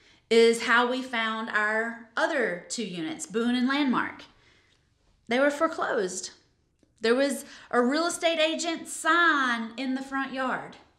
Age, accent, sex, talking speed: 20-39, American, female, 135 wpm